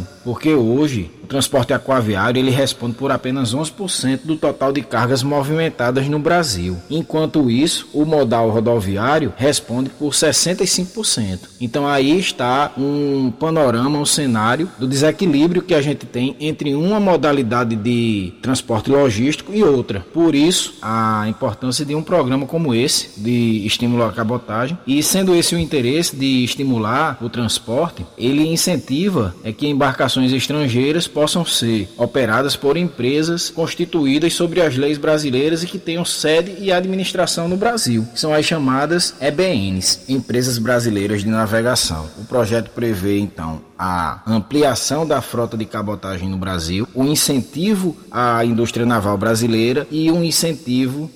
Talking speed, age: 145 wpm, 20-39